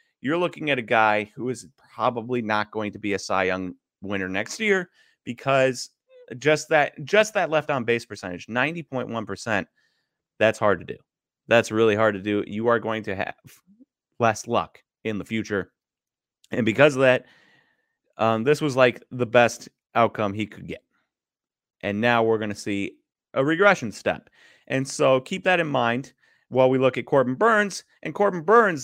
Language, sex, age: English, male, 30-49